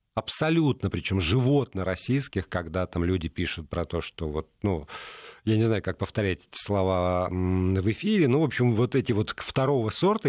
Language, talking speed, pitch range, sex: Russian, 175 wpm, 95-135 Hz, male